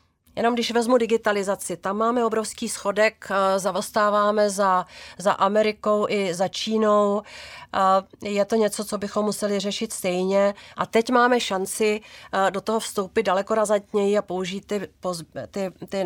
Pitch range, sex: 180-210 Hz, female